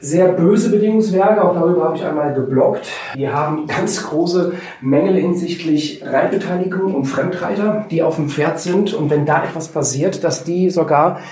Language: German